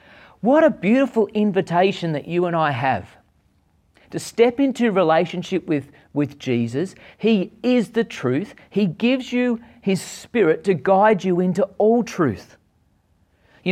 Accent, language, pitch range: Australian, English, 125-195 Hz